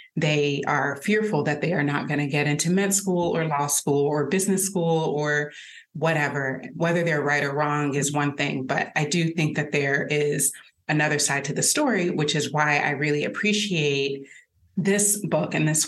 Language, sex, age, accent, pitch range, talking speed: English, female, 30-49, American, 145-165 Hz, 195 wpm